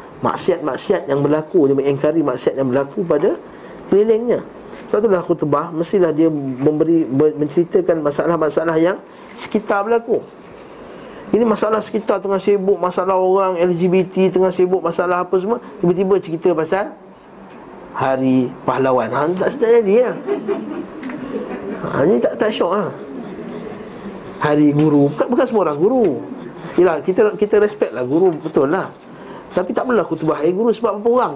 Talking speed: 145 wpm